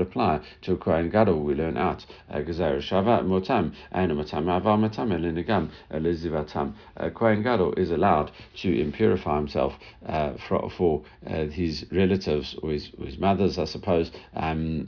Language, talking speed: English, 145 wpm